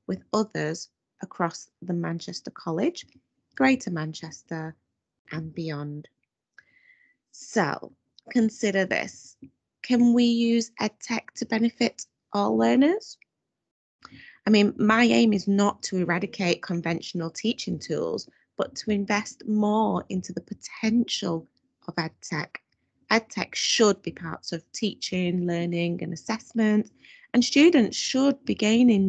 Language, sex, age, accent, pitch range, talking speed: English, female, 30-49, British, 175-240 Hz, 115 wpm